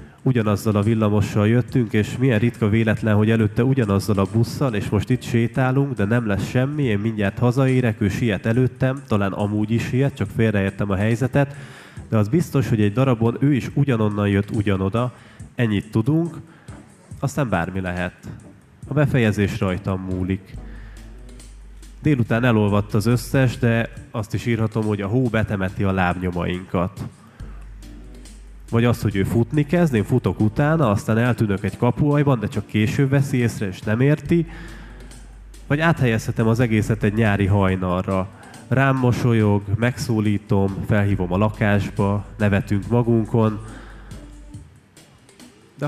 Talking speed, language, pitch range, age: 140 wpm, Hungarian, 100-125 Hz, 30-49